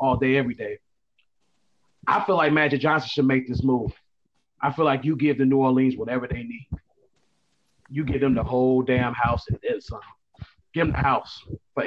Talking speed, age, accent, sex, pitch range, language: 195 wpm, 30-49, American, male, 130-155 Hz, English